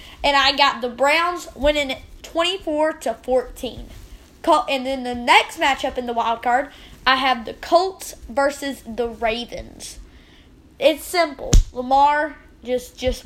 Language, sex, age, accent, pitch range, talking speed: English, female, 20-39, American, 245-315 Hz, 135 wpm